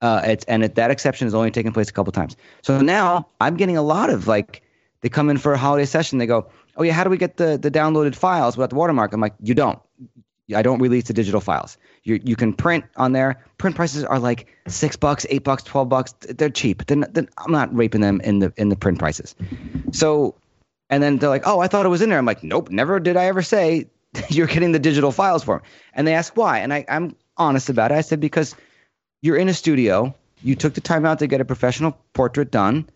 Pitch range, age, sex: 110-150 Hz, 30-49, male